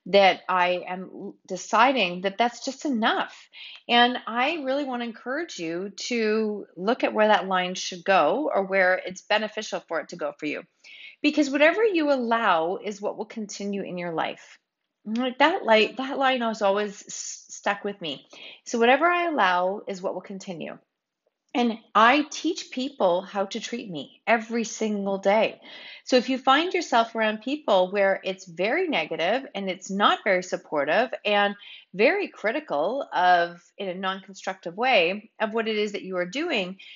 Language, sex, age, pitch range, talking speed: English, female, 30-49, 185-255 Hz, 170 wpm